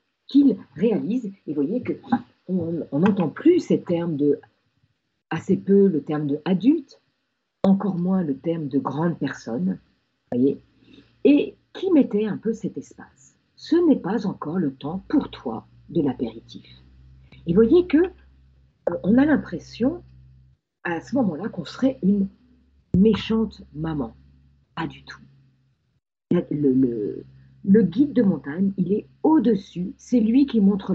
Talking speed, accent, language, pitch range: 145 wpm, French, French, 150-250 Hz